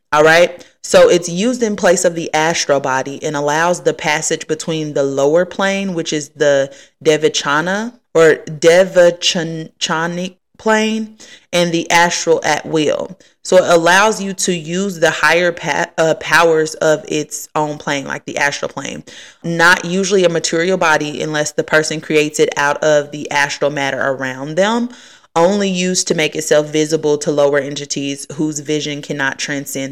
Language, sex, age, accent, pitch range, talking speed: English, female, 30-49, American, 150-175 Hz, 160 wpm